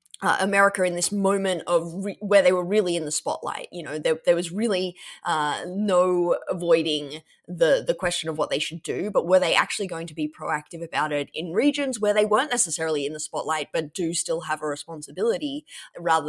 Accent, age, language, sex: Australian, 20-39, English, female